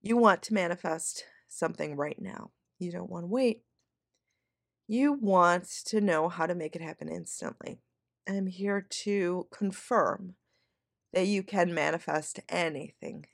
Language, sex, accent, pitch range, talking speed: English, female, American, 175-210 Hz, 145 wpm